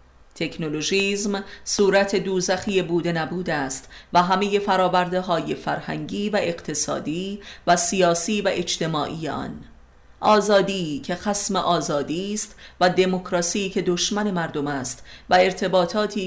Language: Persian